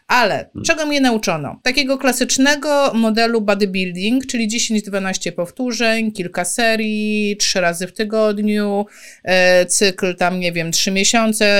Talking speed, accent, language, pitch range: 120 wpm, native, Polish, 195-255 Hz